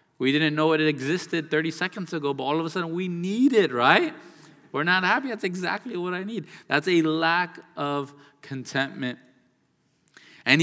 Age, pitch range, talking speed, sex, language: 20-39, 145-180 Hz, 175 wpm, male, English